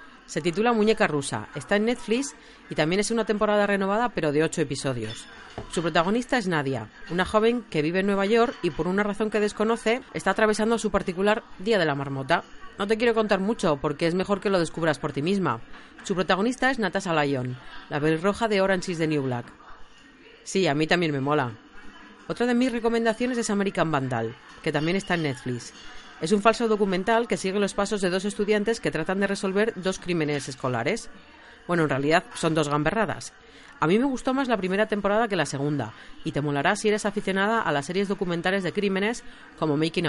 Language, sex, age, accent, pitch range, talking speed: Spanish, female, 40-59, Spanish, 155-220 Hz, 205 wpm